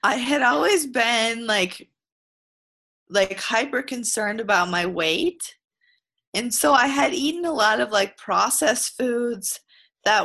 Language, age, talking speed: English, 20-39, 130 wpm